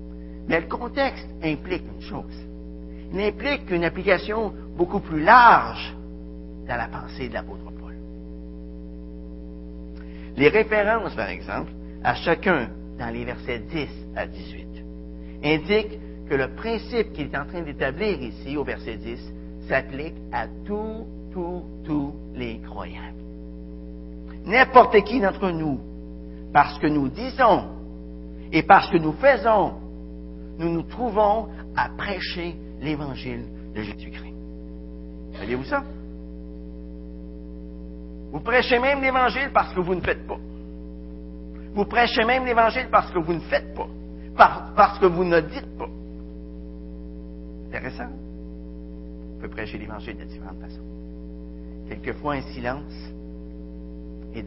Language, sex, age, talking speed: French, male, 60-79, 125 wpm